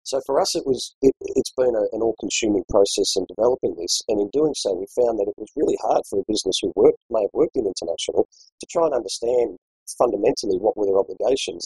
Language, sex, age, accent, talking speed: English, male, 40-59, Australian, 230 wpm